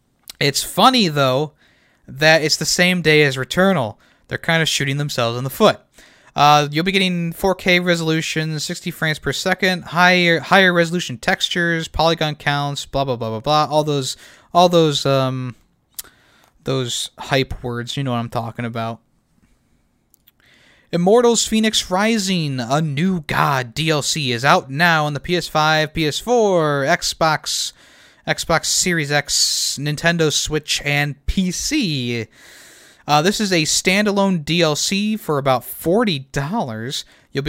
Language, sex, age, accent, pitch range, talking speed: English, male, 20-39, American, 135-170 Hz, 140 wpm